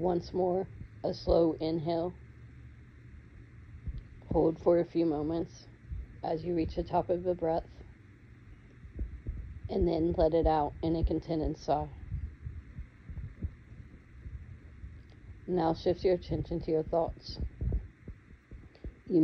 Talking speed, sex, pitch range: 110 wpm, female, 110-165 Hz